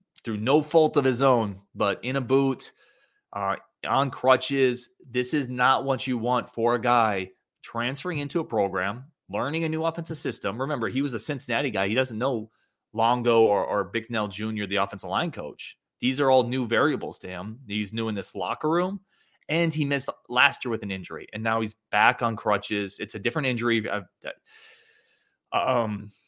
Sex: male